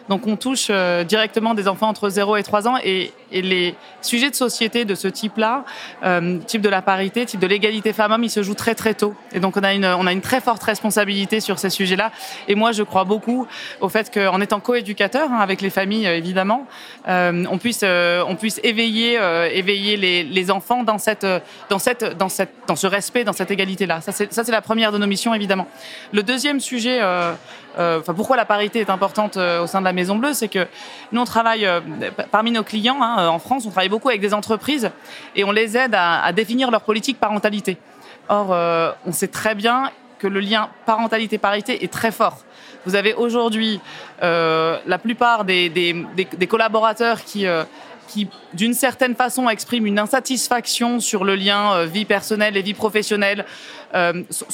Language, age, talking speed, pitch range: French, 20-39, 210 wpm, 195-230 Hz